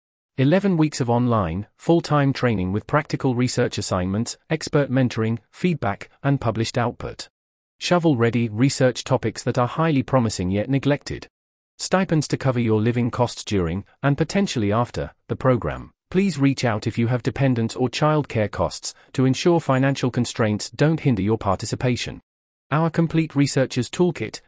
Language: English